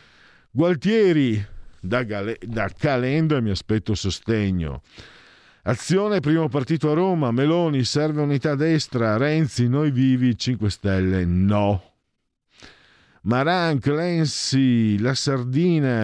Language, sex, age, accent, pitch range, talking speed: Italian, male, 50-69, native, 90-150 Hz, 105 wpm